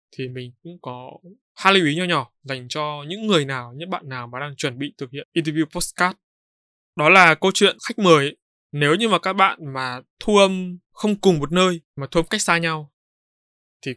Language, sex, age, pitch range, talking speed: Vietnamese, male, 20-39, 135-180 Hz, 220 wpm